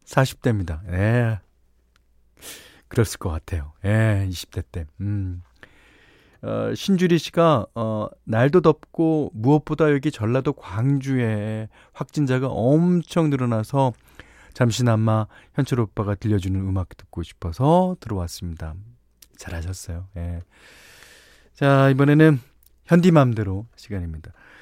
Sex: male